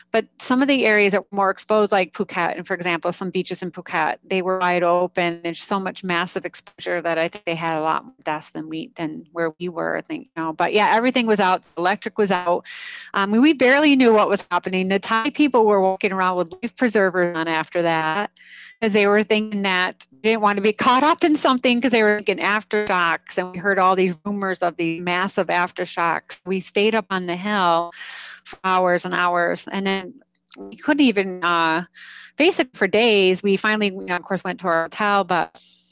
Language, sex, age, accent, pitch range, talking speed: English, female, 30-49, American, 180-215 Hz, 220 wpm